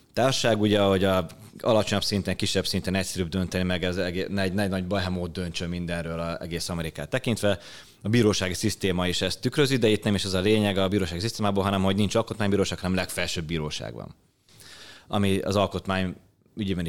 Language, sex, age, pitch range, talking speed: Hungarian, male, 30-49, 90-100 Hz, 175 wpm